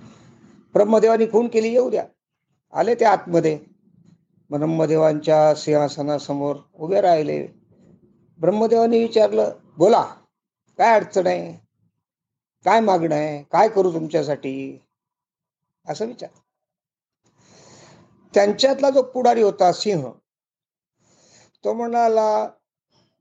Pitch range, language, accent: 155-215 Hz, Marathi, native